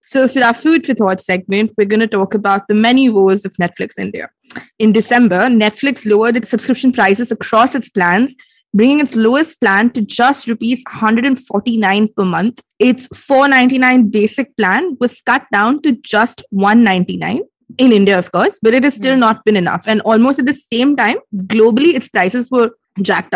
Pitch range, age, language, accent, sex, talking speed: 205-255 Hz, 20-39, English, Indian, female, 180 wpm